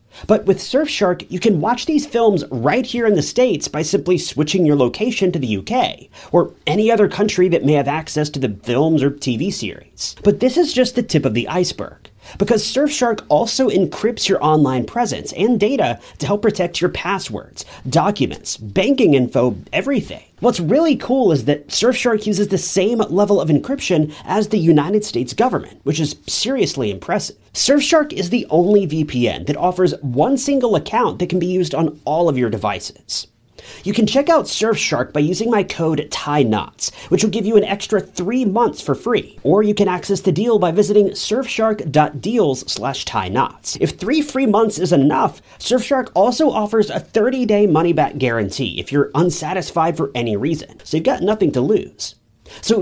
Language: English